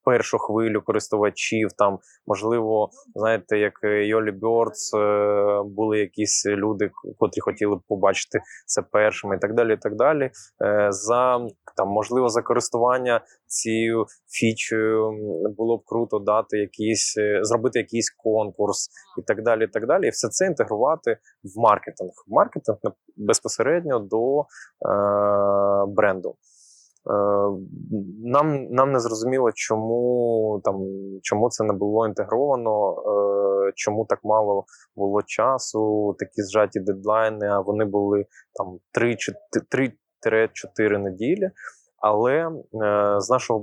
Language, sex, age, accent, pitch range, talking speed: Ukrainian, male, 20-39, native, 105-115 Hz, 120 wpm